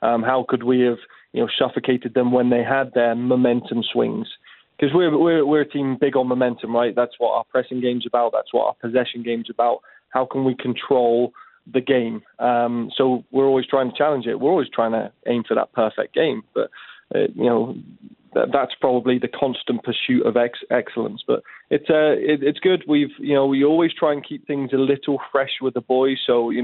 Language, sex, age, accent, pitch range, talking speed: English, male, 20-39, British, 120-130 Hz, 215 wpm